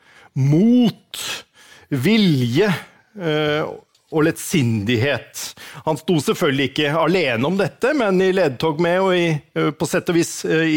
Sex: male